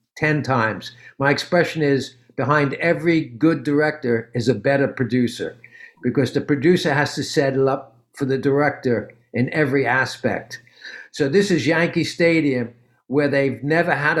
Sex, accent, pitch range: male, American, 130-165 Hz